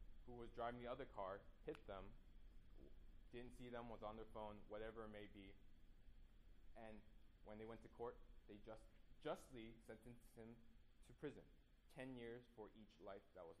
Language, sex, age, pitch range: English, male, 20-39, 90-120 Hz